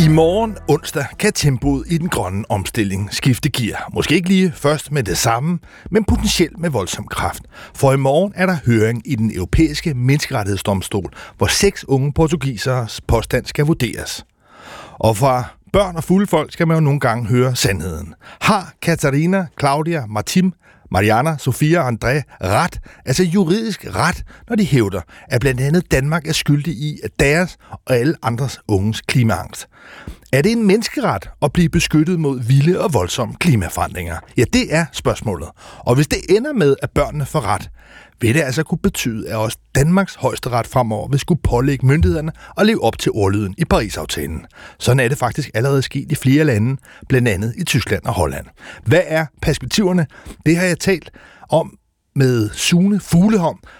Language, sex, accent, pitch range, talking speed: Danish, male, native, 110-160 Hz, 170 wpm